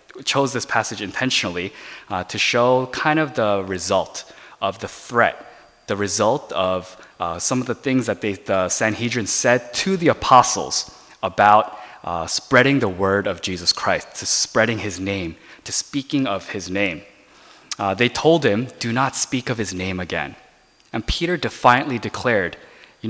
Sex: male